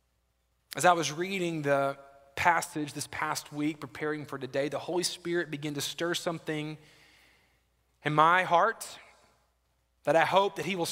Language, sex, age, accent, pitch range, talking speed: English, male, 30-49, American, 155-220 Hz, 155 wpm